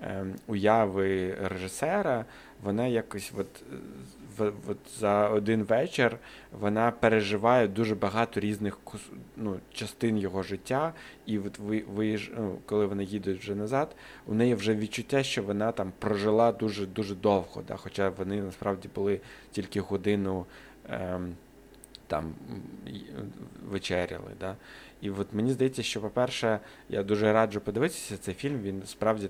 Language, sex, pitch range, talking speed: Ukrainian, male, 95-110 Hz, 130 wpm